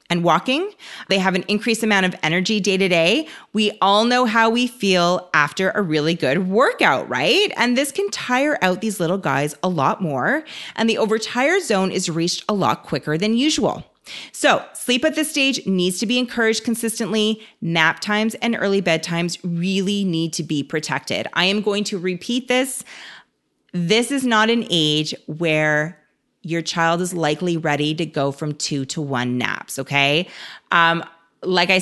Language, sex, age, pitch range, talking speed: English, female, 30-49, 160-210 Hz, 175 wpm